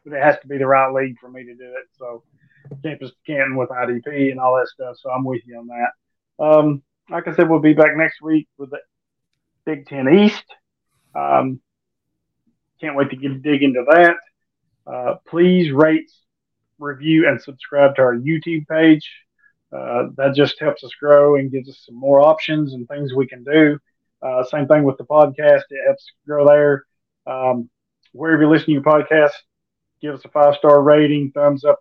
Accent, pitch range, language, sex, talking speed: American, 135-155 Hz, English, male, 190 wpm